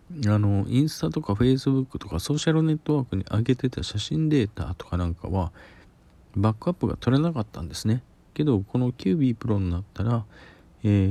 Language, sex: Japanese, male